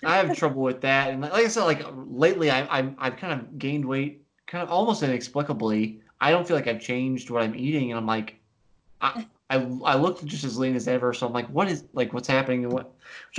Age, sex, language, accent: 20-39, male, English, American